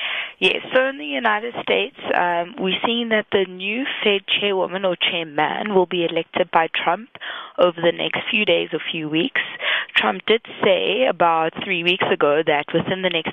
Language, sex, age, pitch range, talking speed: English, female, 20-39, 160-205 Hz, 180 wpm